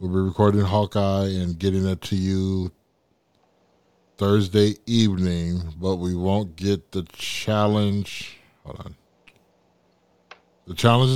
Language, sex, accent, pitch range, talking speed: English, male, American, 90-105 Hz, 115 wpm